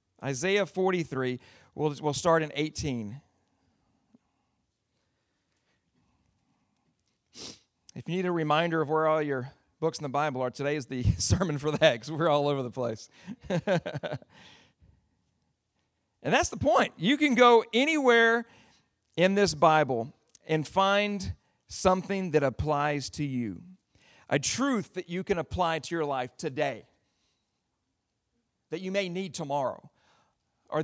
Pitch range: 140-190 Hz